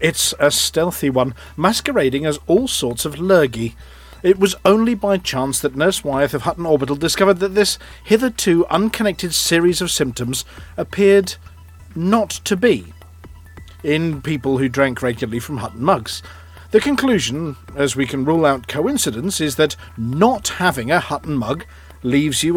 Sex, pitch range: male, 125-180 Hz